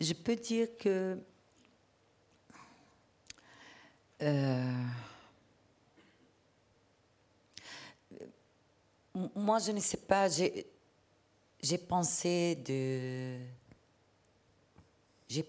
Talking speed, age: 55 wpm, 50-69